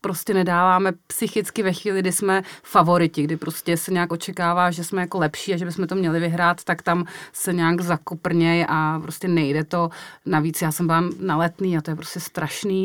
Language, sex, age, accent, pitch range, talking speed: Czech, female, 30-49, native, 160-180 Hz, 195 wpm